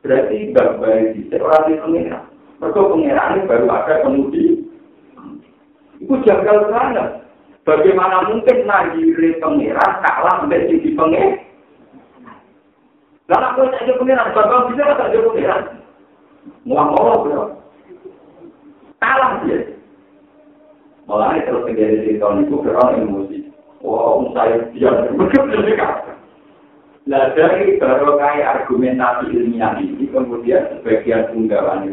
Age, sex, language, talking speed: 50-69, male, Indonesian, 100 wpm